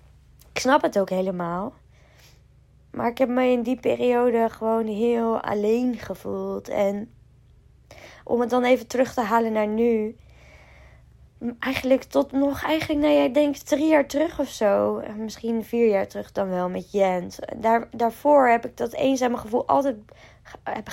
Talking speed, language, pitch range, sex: 160 wpm, Dutch, 210-250 Hz, female